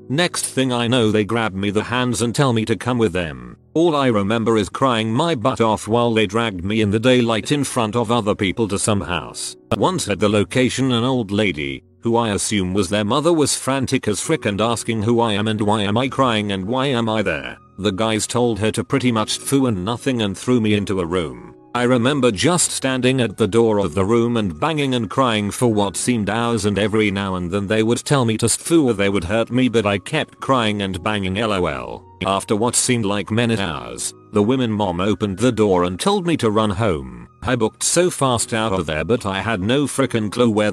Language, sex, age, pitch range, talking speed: English, male, 40-59, 100-125 Hz, 235 wpm